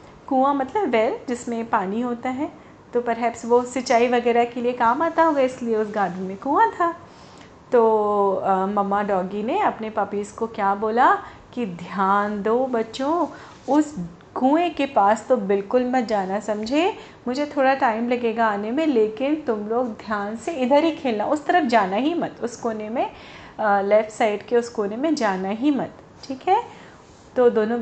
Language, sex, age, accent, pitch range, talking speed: Hindi, female, 40-59, native, 205-270 Hz, 175 wpm